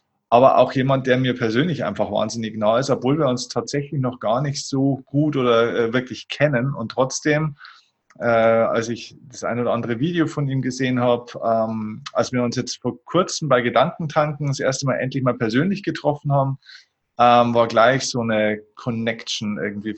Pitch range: 115-140 Hz